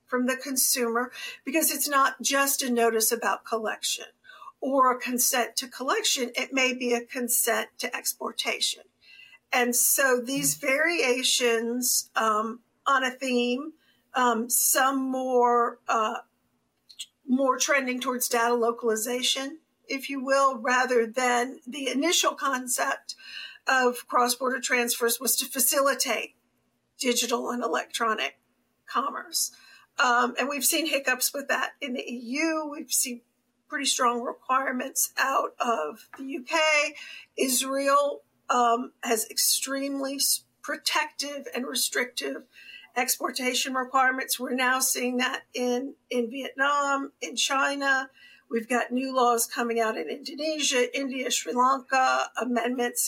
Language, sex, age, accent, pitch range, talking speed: English, female, 50-69, American, 240-275 Hz, 120 wpm